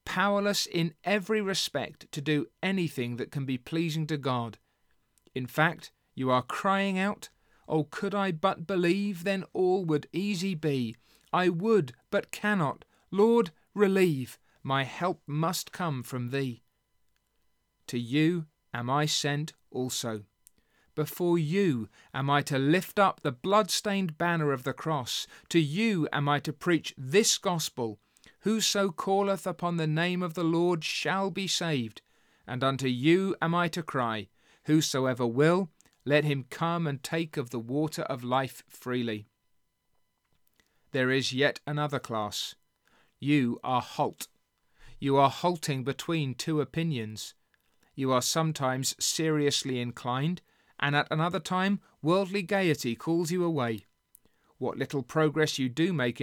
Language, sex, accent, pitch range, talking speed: English, male, British, 130-180 Hz, 140 wpm